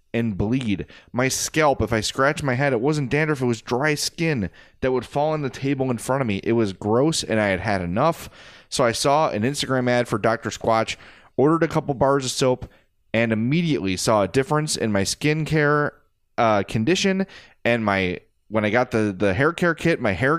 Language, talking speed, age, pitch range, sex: English, 210 wpm, 30-49, 110-145 Hz, male